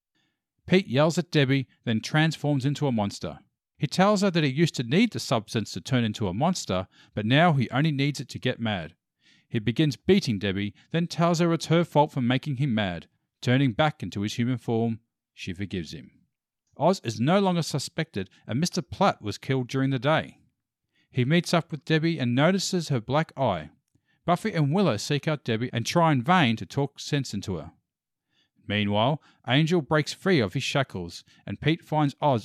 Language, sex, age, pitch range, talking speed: English, male, 40-59, 115-155 Hz, 195 wpm